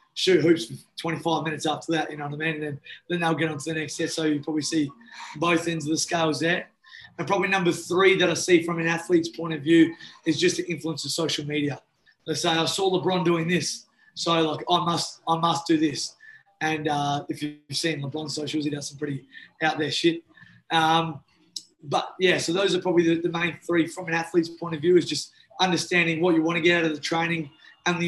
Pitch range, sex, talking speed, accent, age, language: 155-175 Hz, male, 240 wpm, Australian, 20-39, English